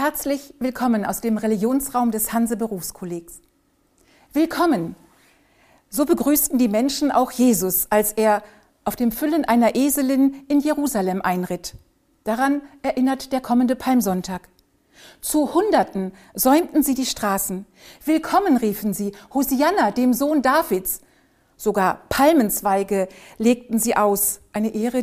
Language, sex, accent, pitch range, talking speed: German, female, German, 210-275 Hz, 115 wpm